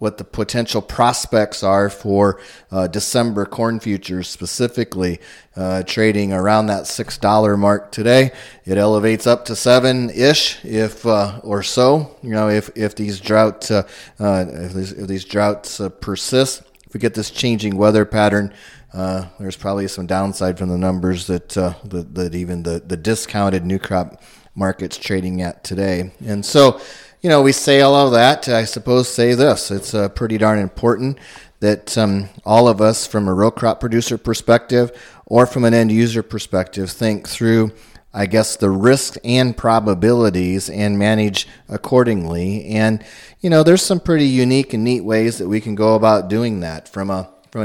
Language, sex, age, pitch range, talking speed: English, male, 30-49, 95-115 Hz, 175 wpm